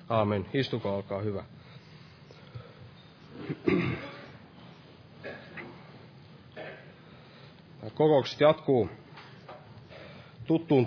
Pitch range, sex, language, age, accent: 125-160 Hz, male, Finnish, 30-49, native